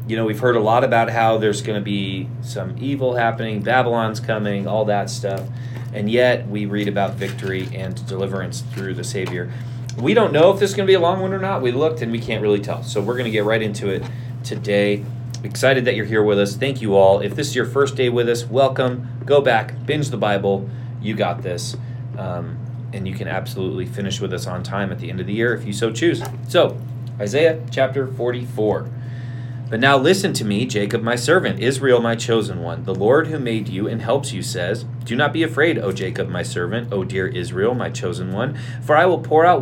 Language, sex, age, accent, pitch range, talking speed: English, male, 30-49, American, 110-125 Hz, 230 wpm